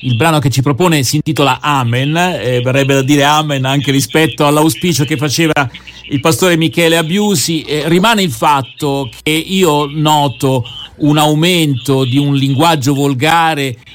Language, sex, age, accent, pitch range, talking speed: Italian, male, 50-69, native, 140-180 Hz, 150 wpm